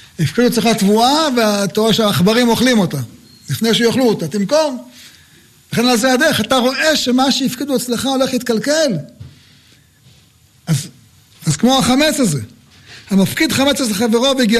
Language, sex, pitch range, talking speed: Hebrew, male, 180-250 Hz, 135 wpm